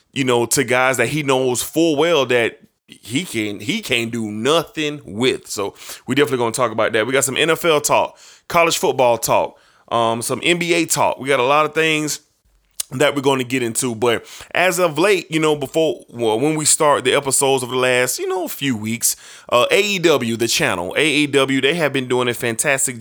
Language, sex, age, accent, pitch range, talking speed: English, male, 20-39, American, 120-150 Hz, 205 wpm